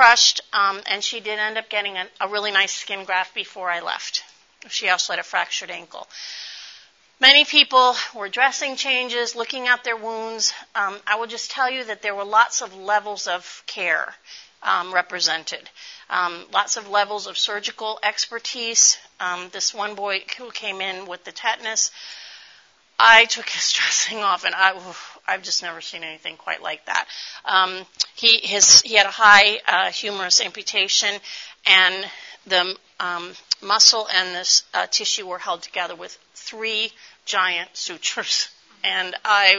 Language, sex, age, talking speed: English, female, 40-59, 160 wpm